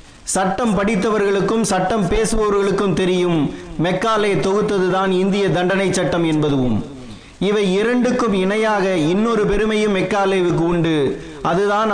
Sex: male